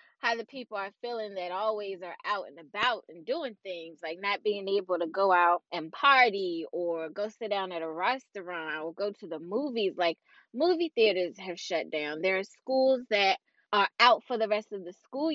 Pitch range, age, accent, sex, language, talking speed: 170-225 Hz, 20-39, American, female, English, 205 wpm